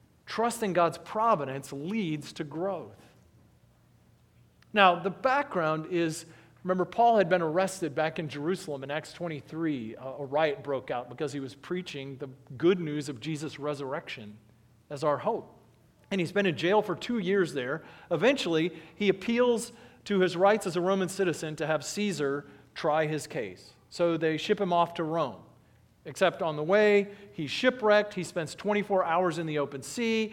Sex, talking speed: male, 170 wpm